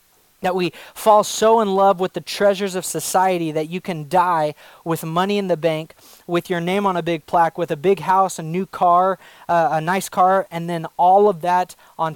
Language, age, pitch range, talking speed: English, 30-49, 150-185 Hz, 215 wpm